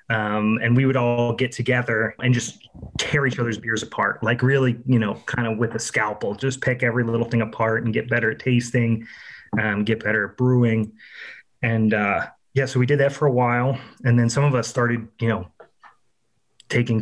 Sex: male